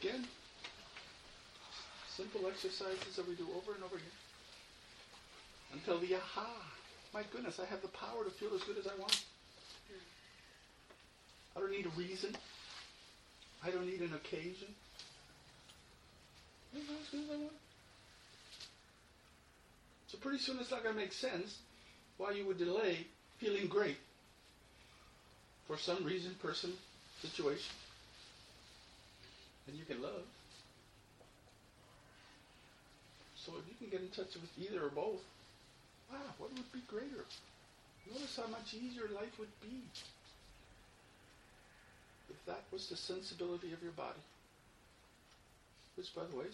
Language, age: English, 50-69